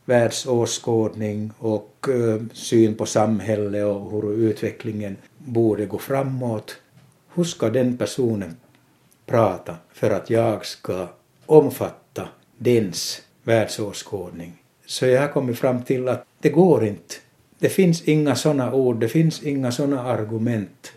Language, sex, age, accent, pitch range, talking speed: Swedish, male, 60-79, Finnish, 110-135 Hz, 120 wpm